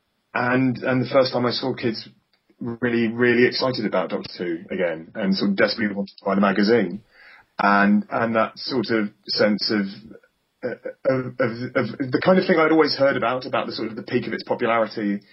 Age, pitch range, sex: 30-49, 100-125 Hz, male